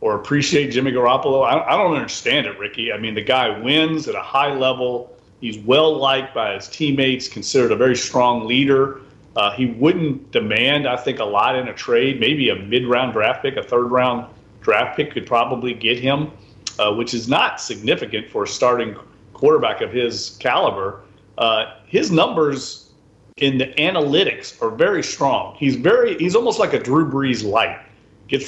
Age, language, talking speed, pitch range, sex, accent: 40-59, English, 180 wpm, 120-155 Hz, male, American